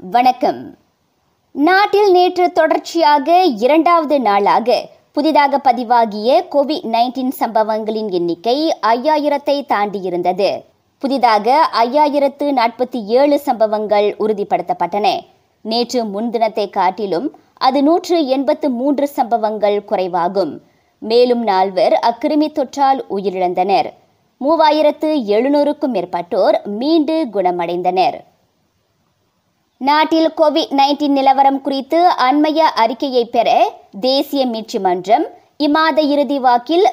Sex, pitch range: male, 220-305 Hz